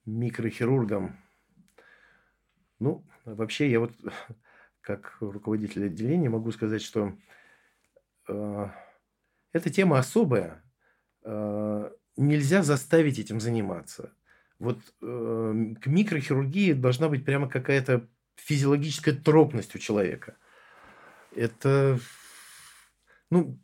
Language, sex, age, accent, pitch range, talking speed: Russian, male, 50-69, native, 115-155 Hz, 85 wpm